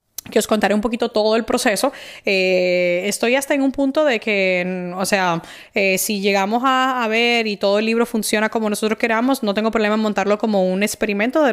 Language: Spanish